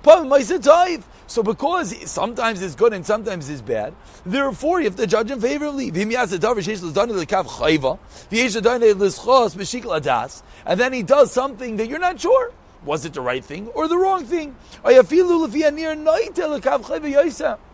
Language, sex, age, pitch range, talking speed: English, male, 40-59, 195-295 Hz, 120 wpm